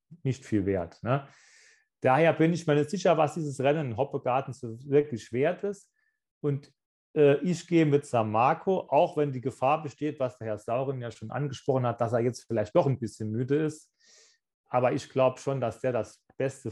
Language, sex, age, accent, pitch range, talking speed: German, male, 30-49, German, 115-145 Hz, 200 wpm